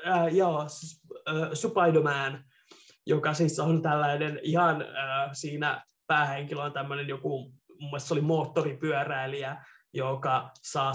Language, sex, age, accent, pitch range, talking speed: Finnish, male, 20-39, native, 145-180 Hz, 120 wpm